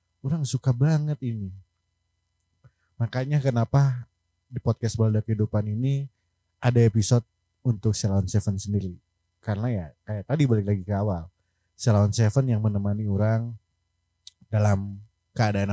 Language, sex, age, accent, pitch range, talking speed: Indonesian, male, 30-49, native, 100-125 Hz, 120 wpm